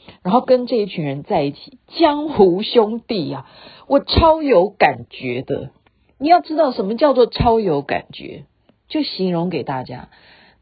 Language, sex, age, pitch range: Chinese, female, 50-69, 170-275 Hz